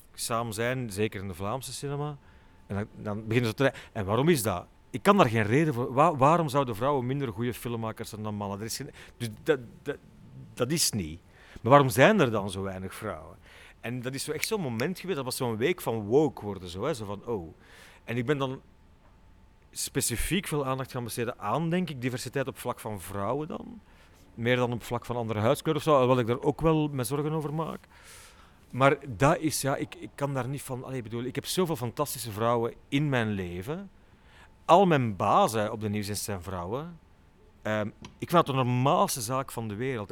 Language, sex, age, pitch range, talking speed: Dutch, male, 40-59, 105-140 Hz, 220 wpm